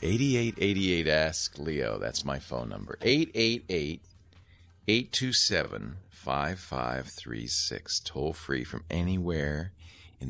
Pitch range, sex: 85-100 Hz, male